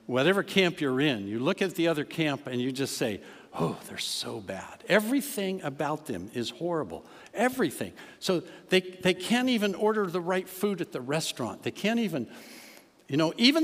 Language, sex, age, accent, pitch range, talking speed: English, male, 60-79, American, 130-195 Hz, 185 wpm